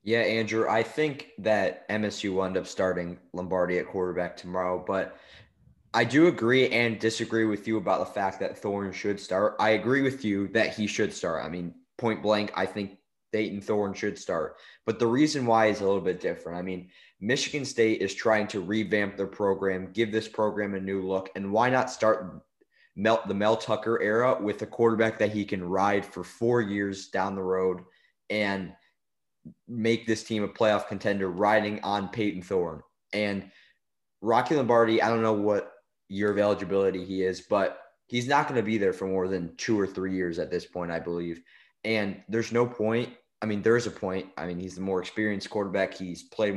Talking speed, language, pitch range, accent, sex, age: 200 wpm, English, 95-115 Hz, American, male, 20-39